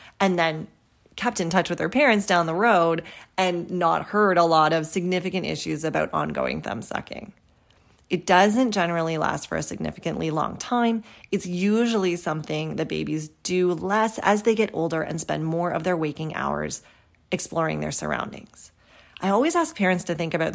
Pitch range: 165-210 Hz